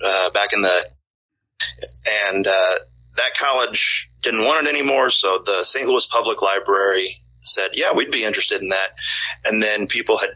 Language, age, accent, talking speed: English, 30-49, American, 170 wpm